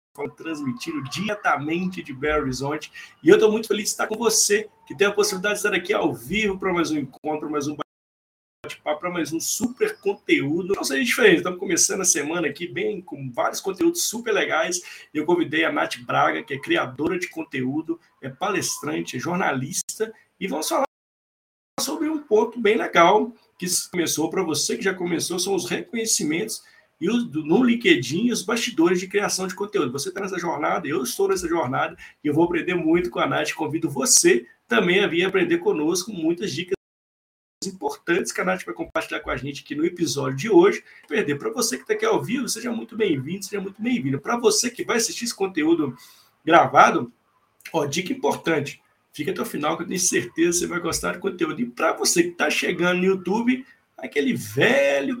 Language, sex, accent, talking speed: Portuguese, male, Brazilian, 190 wpm